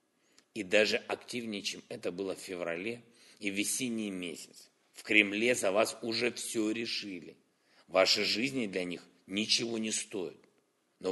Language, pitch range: Ukrainian, 100-125 Hz